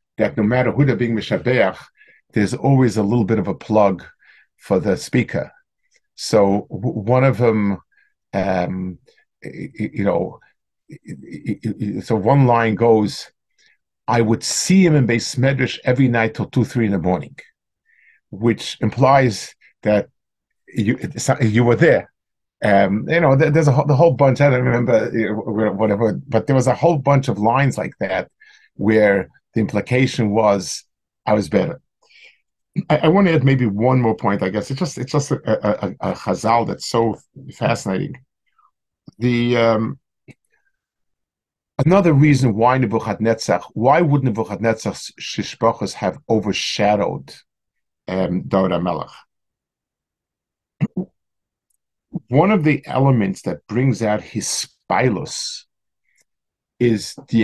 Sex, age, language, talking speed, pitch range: male, 50-69, English, 135 wpm, 105-135 Hz